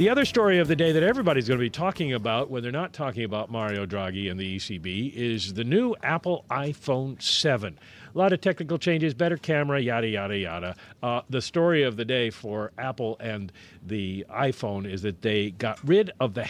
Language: English